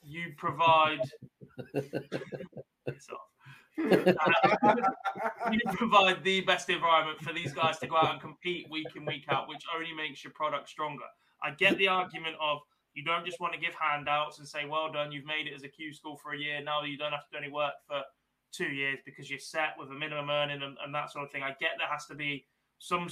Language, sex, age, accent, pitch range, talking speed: English, male, 20-39, British, 140-155 Hz, 215 wpm